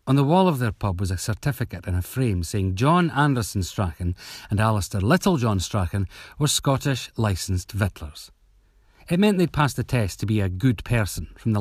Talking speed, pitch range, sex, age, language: 195 wpm, 90-120 Hz, male, 40-59, English